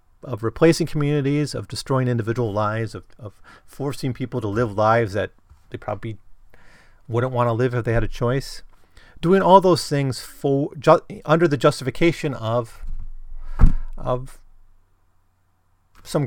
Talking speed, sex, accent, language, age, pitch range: 140 wpm, male, American, English, 30-49, 95-125 Hz